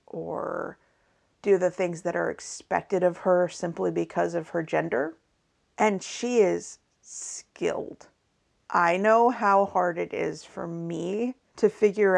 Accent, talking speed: American, 140 wpm